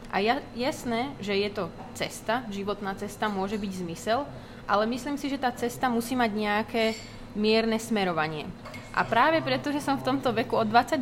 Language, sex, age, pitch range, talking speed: Slovak, female, 20-39, 200-240 Hz, 180 wpm